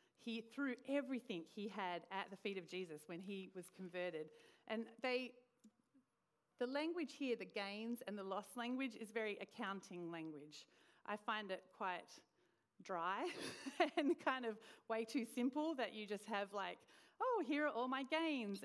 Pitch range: 185-245 Hz